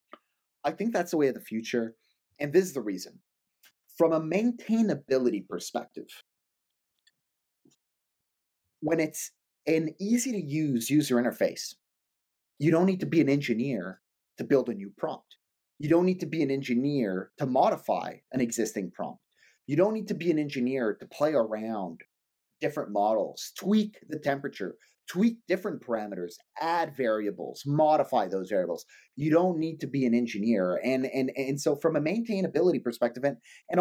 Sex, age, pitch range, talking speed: male, 30-49, 120-175 Hz, 160 wpm